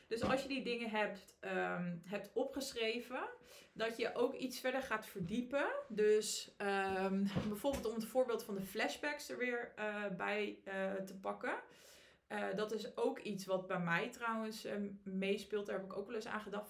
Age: 20-39